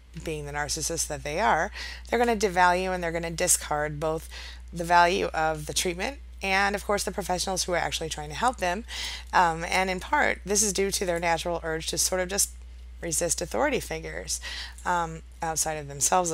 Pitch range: 150-180 Hz